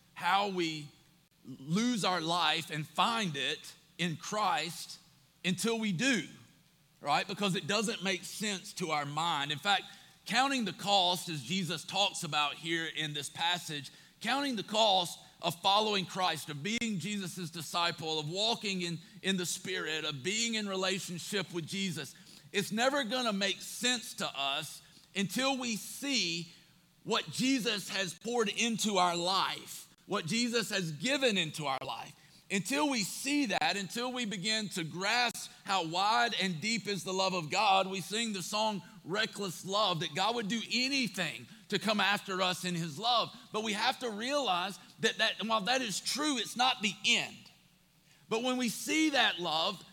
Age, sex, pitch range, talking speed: 40-59, male, 175-220 Hz, 170 wpm